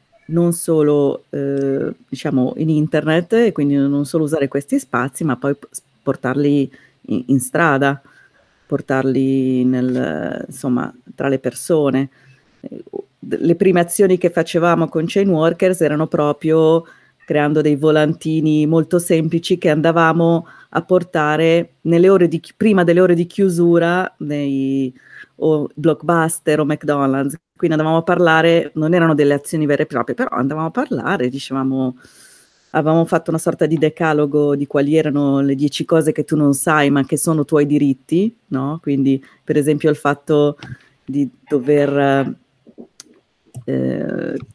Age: 30-49